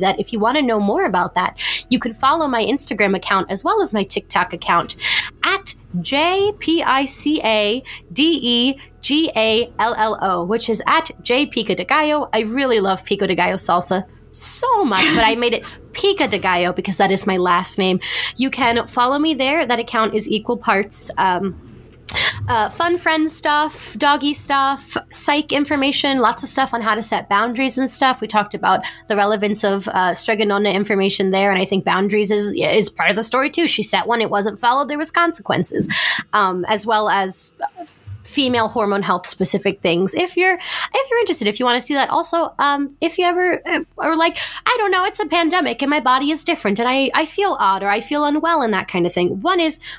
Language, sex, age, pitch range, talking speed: English, female, 20-39, 200-300 Hz, 210 wpm